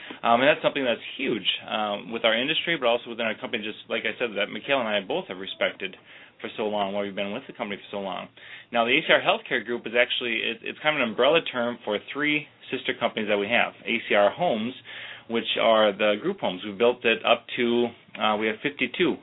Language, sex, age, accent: English, male, 30-49, American